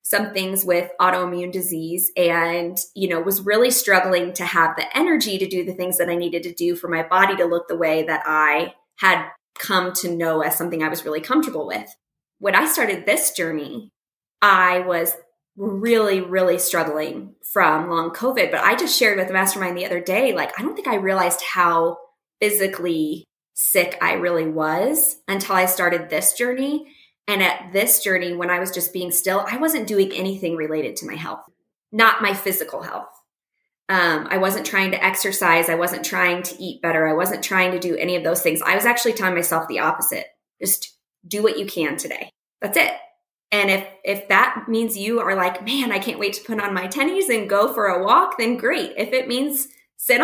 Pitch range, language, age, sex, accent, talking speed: 175-215 Hz, English, 20-39, female, American, 205 wpm